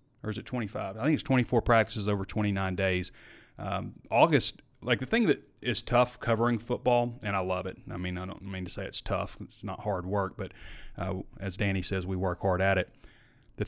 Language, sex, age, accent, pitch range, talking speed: English, male, 30-49, American, 100-120 Hz, 220 wpm